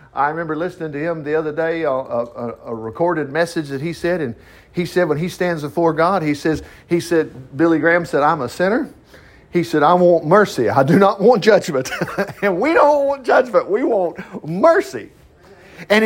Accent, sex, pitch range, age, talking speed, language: American, male, 160-210 Hz, 50-69, 200 wpm, English